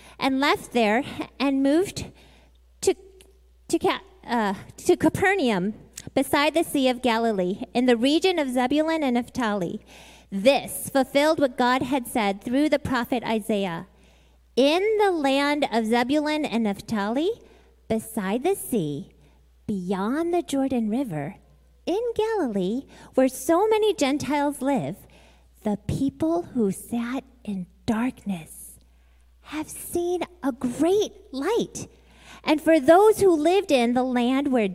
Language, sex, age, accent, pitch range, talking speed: English, female, 30-49, American, 225-320 Hz, 125 wpm